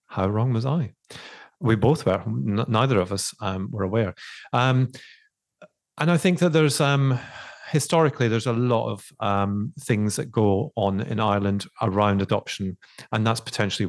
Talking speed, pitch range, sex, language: 165 wpm, 100-120 Hz, male, English